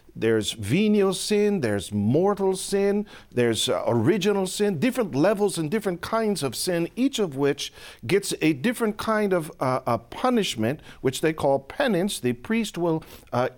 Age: 50-69